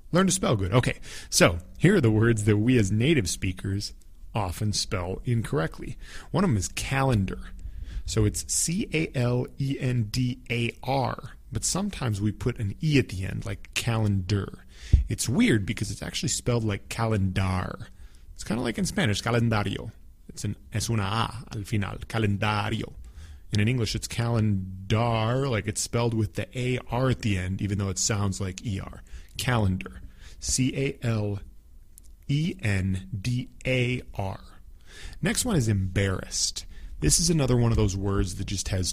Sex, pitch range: male, 95-125 Hz